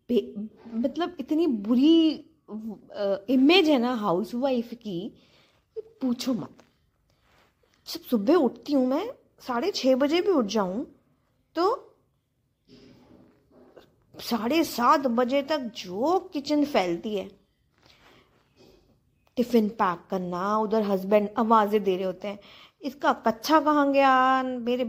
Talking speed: 115 wpm